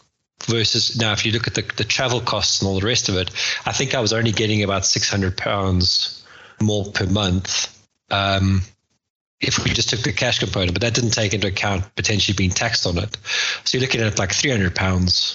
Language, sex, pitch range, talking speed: English, male, 95-115 Hz, 205 wpm